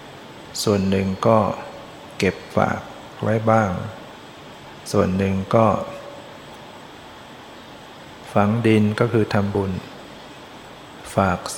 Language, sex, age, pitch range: Thai, male, 60-79, 100-115 Hz